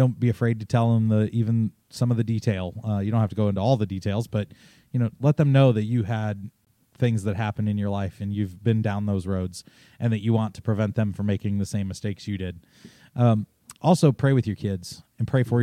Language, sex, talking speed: English, male, 255 wpm